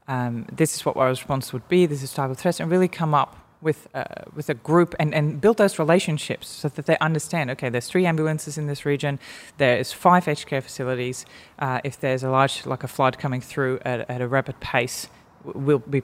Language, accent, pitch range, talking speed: English, Australian, 130-155 Hz, 225 wpm